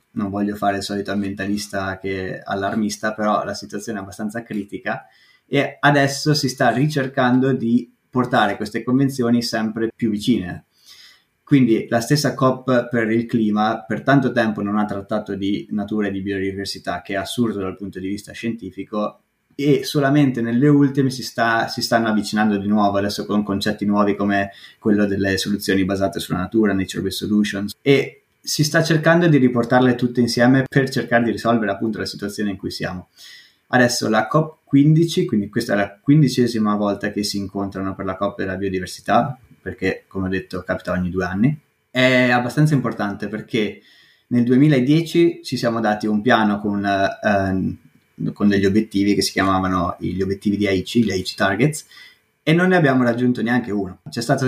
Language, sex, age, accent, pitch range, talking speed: Italian, male, 20-39, native, 100-125 Hz, 170 wpm